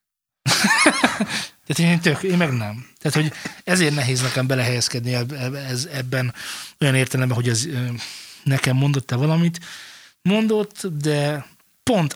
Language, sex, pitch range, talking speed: Hungarian, male, 125-165 Hz, 125 wpm